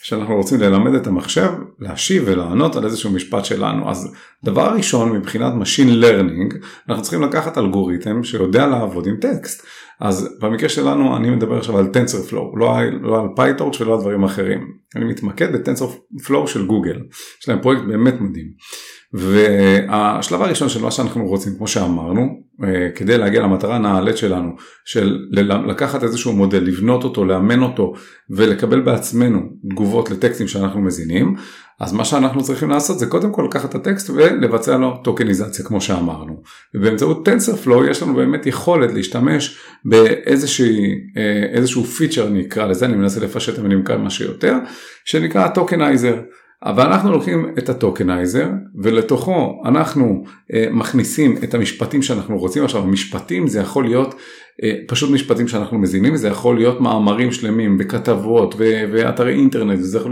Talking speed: 145 wpm